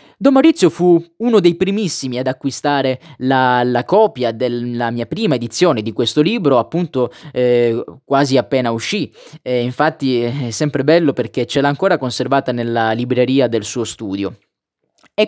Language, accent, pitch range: Italian, native, 125-165 Hz